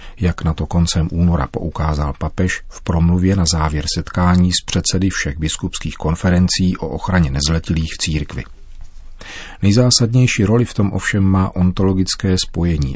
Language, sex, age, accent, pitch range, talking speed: Czech, male, 40-59, native, 80-95 Hz, 140 wpm